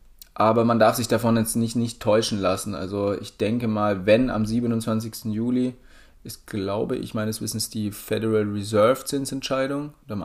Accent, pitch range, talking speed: German, 105-120 Hz, 170 wpm